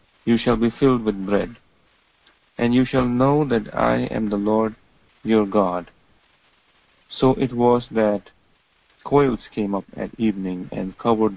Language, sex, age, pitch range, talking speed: English, male, 50-69, 105-120 Hz, 150 wpm